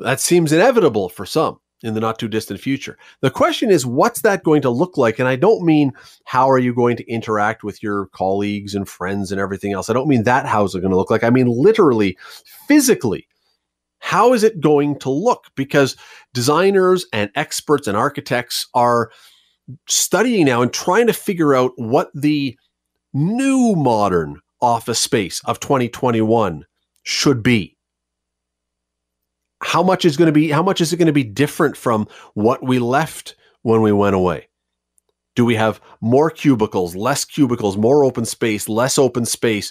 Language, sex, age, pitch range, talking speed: English, male, 40-59, 110-155 Hz, 180 wpm